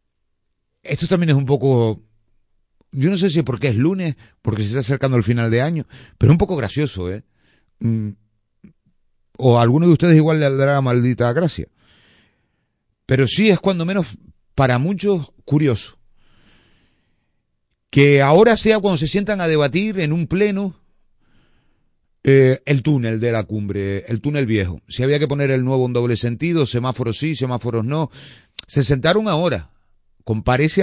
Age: 30-49